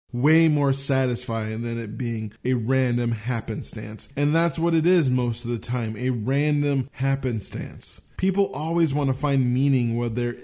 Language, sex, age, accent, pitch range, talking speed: English, male, 20-39, American, 125-150 Hz, 165 wpm